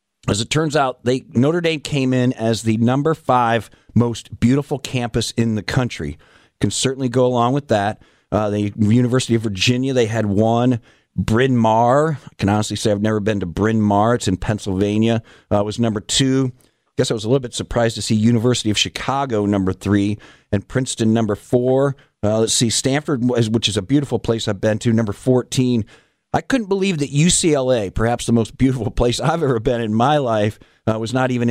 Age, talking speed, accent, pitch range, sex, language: 50-69, 200 wpm, American, 105-130 Hz, male, English